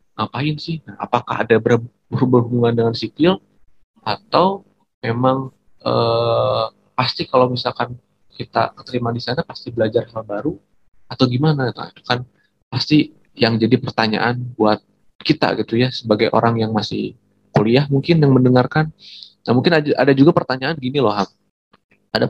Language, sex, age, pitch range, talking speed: Indonesian, male, 20-39, 115-140 Hz, 140 wpm